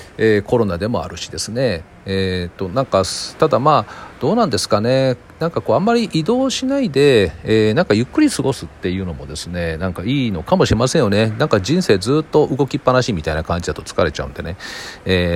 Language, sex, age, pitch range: Japanese, male, 40-59, 90-140 Hz